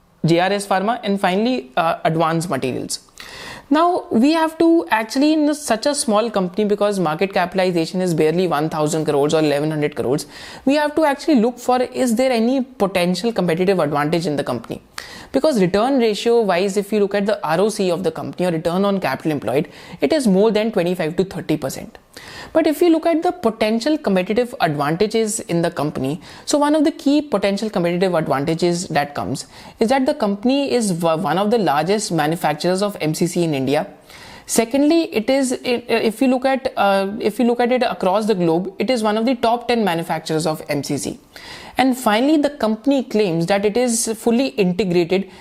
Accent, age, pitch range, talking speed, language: native, 30-49, 170-245 Hz, 190 wpm, Hindi